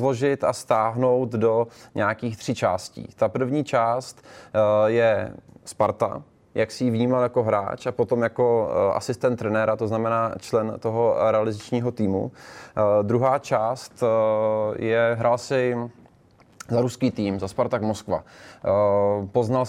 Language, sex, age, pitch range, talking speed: Czech, male, 20-39, 105-120 Hz, 125 wpm